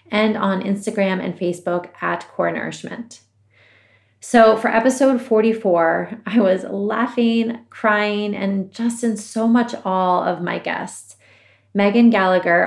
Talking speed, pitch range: 130 wpm, 180-210 Hz